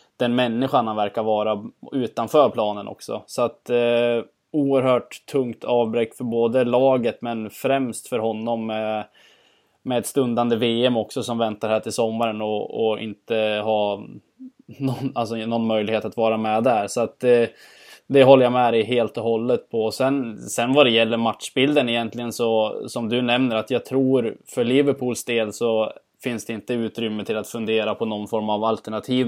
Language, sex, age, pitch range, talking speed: Swedish, male, 20-39, 110-125 Hz, 165 wpm